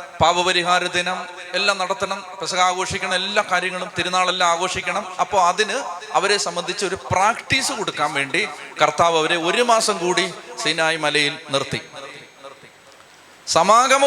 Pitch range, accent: 175-220 Hz, native